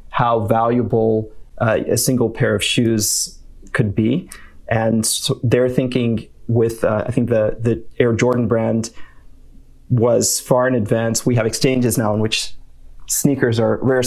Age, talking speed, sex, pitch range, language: 30-49, 155 wpm, male, 110-130 Hz, English